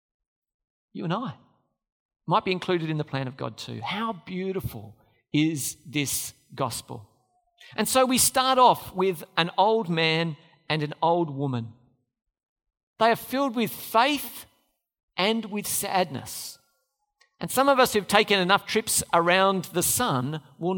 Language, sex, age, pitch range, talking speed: English, male, 50-69, 145-210 Hz, 145 wpm